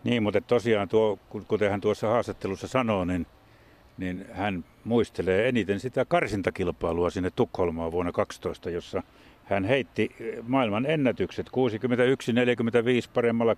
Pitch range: 95-120 Hz